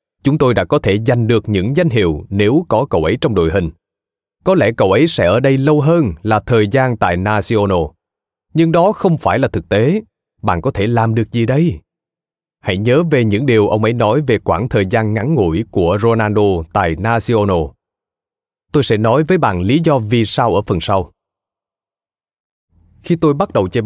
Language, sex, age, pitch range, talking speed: Vietnamese, male, 20-39, 95-145 Hz, 200 wpm